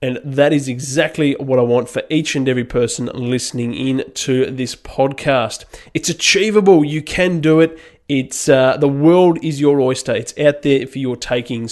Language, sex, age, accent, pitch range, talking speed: English, male, 20-39, Australian, 130-170 Hz, 185 wpm